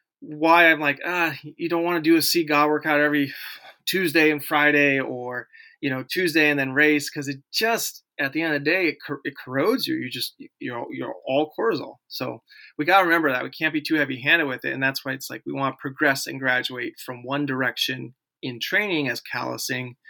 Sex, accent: male, American